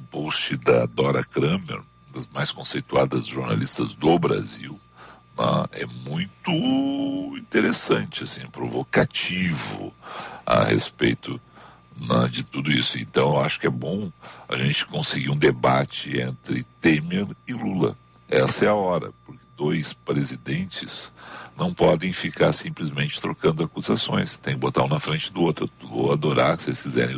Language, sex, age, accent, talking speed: Portuguese, male, 60-79, Brazilian, 130 wpm